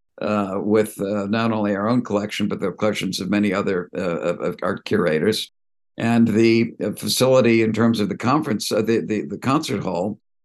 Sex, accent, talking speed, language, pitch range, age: male, American, 190 wpm, English, 105-115 Hz, 60-79